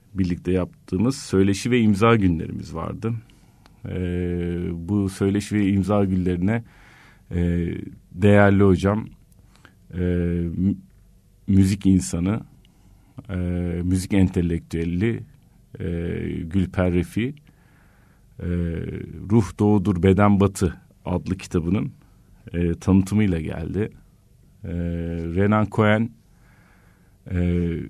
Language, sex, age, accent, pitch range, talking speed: Turkish, male, 50-69, native, 90-105 Hz, 85 wpm